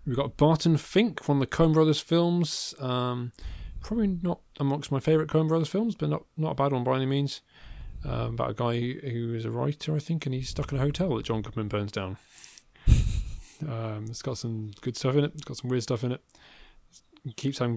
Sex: male